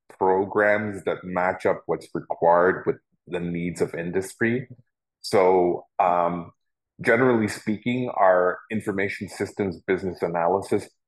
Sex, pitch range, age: male, 85-95 Hz, 30-49